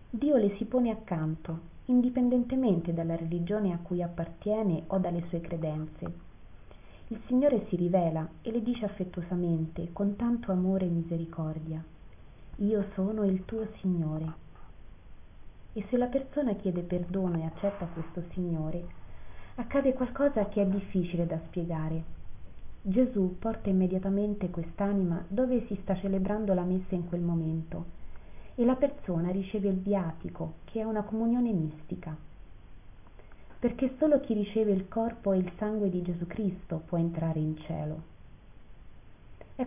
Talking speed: 140 wpm